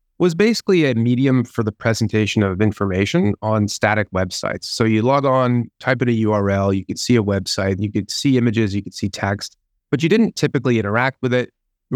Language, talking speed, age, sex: English, 205 wpm, 30-49, male